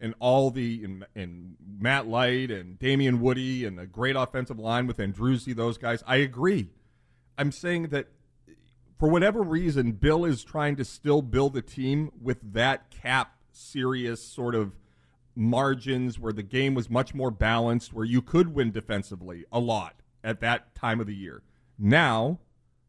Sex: male